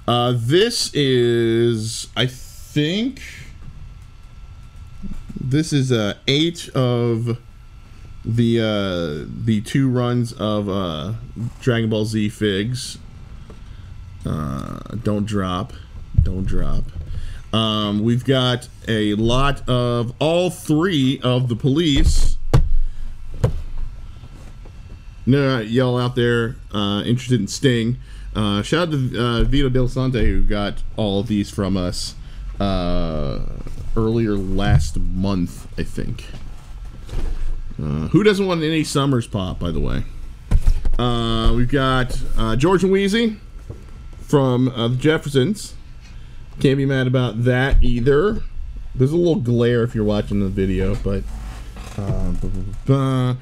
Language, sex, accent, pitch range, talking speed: English, male, American, 100-125 Hz, 120 wpm